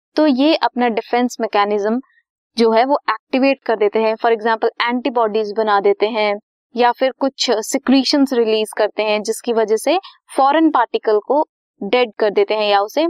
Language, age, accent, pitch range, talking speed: Hindi, 20-39, native, 220-285 Hz, 165 wpm